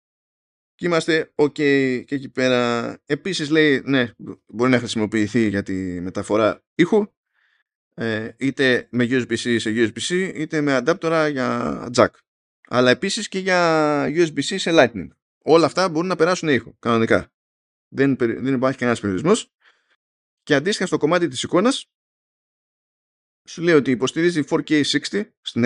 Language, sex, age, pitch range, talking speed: Greek, male, 20-39, 115-150 Hz, 135 wpm